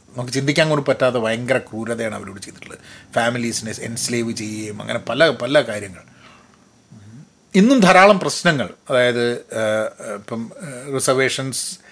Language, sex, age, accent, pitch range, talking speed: Malayalam, male, 30-49, native, 120-150 Hz, 105 wpm